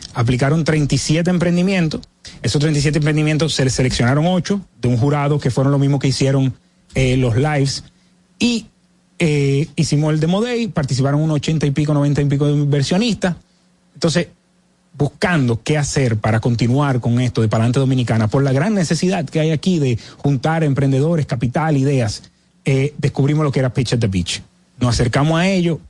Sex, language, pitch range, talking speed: male, Spanish, 135-170 Hz, 170 wpm